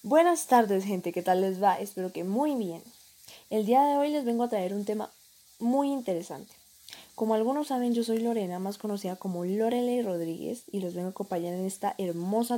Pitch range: 185-235 Hz